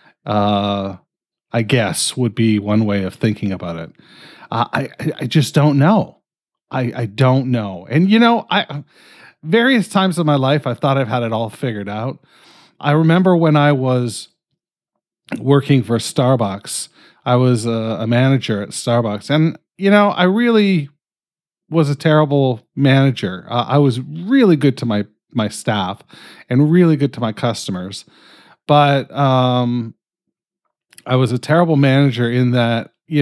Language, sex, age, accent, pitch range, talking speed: English, male, 40-59, American, 110-145 Hz, 155 wpm